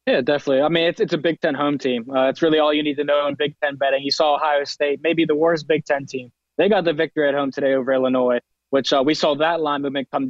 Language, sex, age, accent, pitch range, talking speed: English, male, 20-39, American, 120-135 Hz, 290 wpm